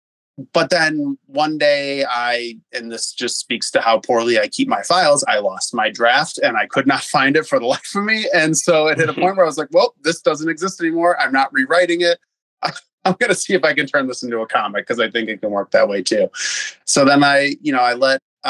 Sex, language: male, English